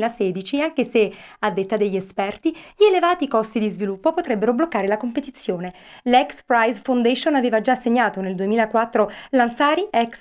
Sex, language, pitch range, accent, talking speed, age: female, Italian, 210-290 Hz, native, 140 wpm, 30-49